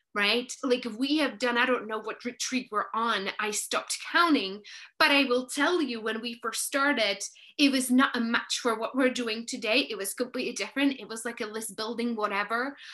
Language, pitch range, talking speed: English, 220-265 Hz, 210 wpm